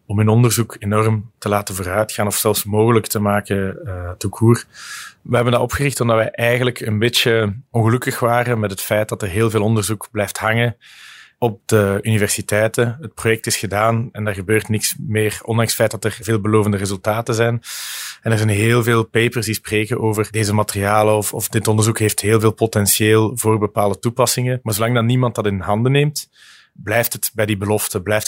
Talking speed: 195 wpm